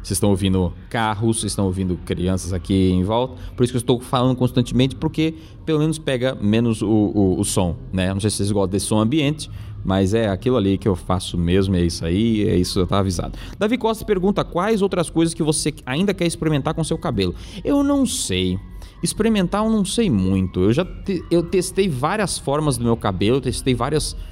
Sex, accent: male, Brazilian